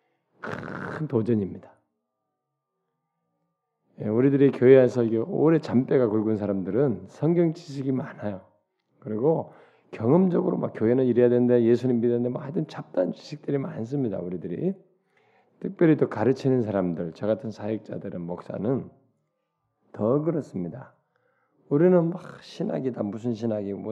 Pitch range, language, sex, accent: 110-150 Hz, Korean, male, native